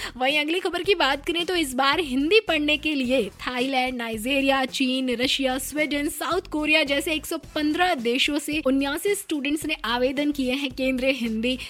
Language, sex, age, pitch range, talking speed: Hindi, female, 20-39, 235-300 Hz, 175 wpm